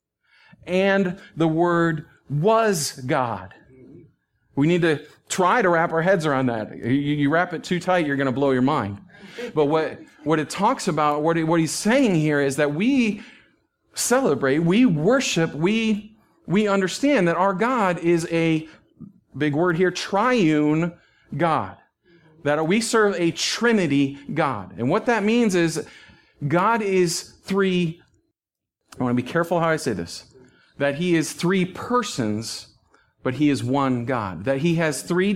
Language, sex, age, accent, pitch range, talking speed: English, male, 40-59, American, 135-185 Hz, 160 wpm